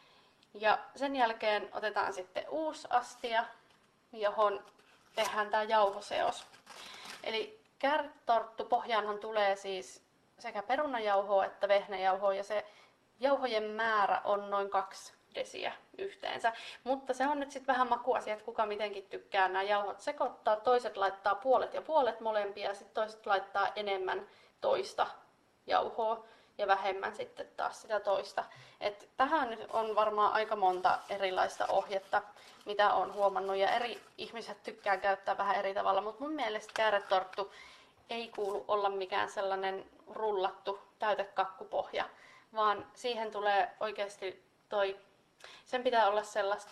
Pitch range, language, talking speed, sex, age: 200-230 Hz, Finnish, 130 wpm, female, 30-49